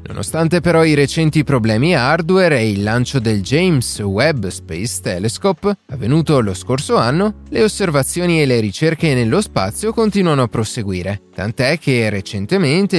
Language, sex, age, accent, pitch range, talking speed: Italian, male, 30-49, native, 110-165 Hz, 145 wpm